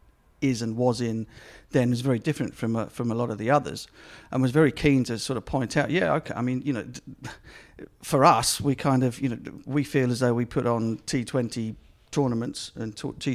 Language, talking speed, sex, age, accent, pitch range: English, 220 wpm, male, 50-69, British, 110-130 Hz